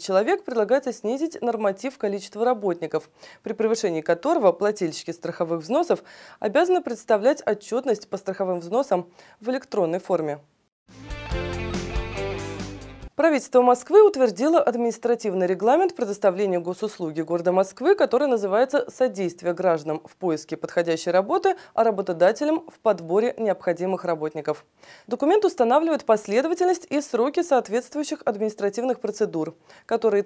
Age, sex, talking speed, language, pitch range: 20-39, female, 105 wpm, Russian, 175-245 Hz